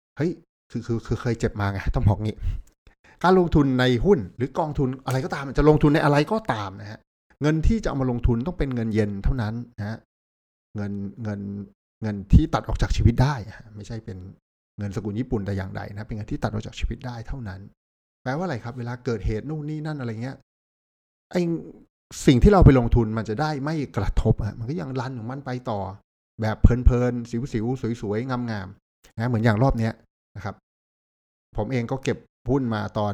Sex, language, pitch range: male, Thai, 100-120 Hz